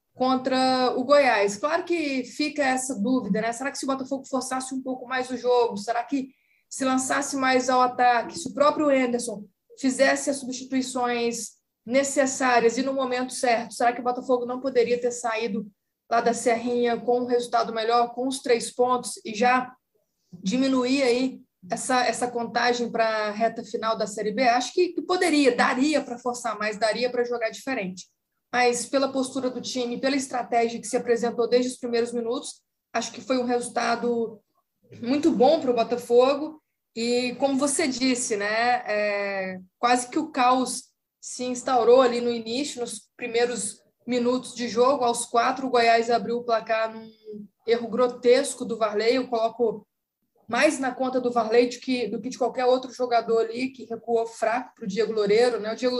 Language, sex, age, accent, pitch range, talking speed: Portuguese, female, 20-39, Brazilian, 230-260 Hz, 180 wpm